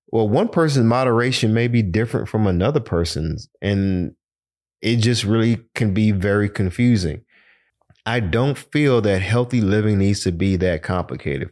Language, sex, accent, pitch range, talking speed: English, male, American, 95-115 Hz, 150 wpm